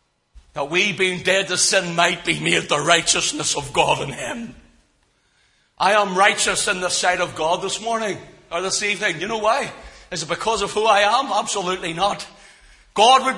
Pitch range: 140-195 Hz